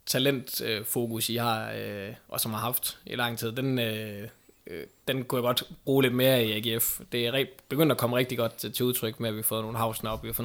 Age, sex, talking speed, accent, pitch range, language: 20-39, male, 255 wpm, native, 110-125 Hz, Danish